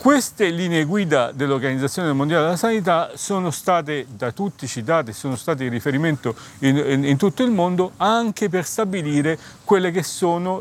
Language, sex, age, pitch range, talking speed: Italian, male, 40-59, 130-170 Hz, 160 wpm